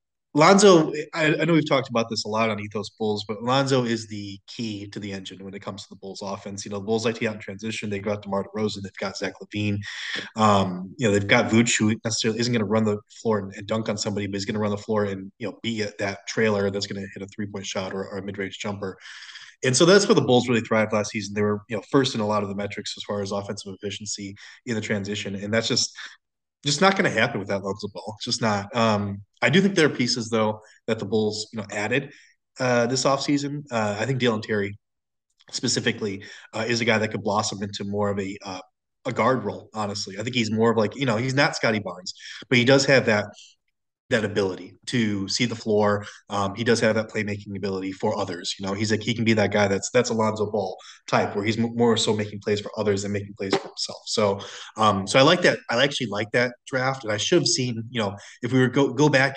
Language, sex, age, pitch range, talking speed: English, male, 20-39, 100-120 Hz, 260 wpm